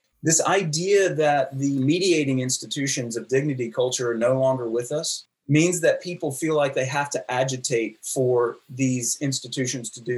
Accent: American